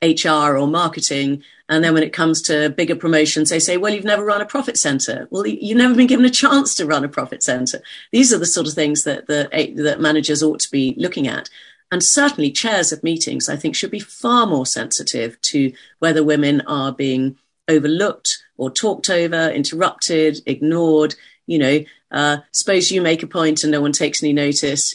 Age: 40-59